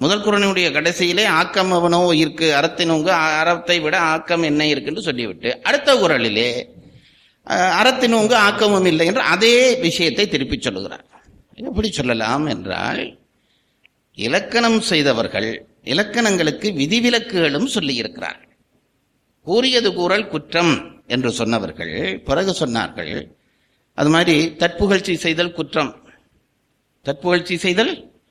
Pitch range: 155-210 Hz